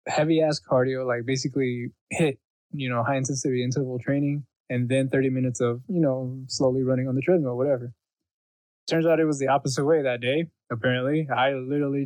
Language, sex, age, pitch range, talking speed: English, male, 20-39, 120-140 Hz, 175 wpm